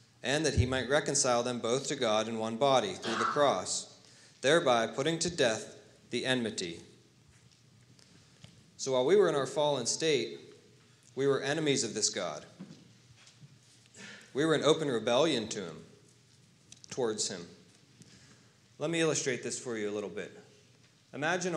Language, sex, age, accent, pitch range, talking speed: English, male, 40-59, American, 120-150 Hz, 150 wpm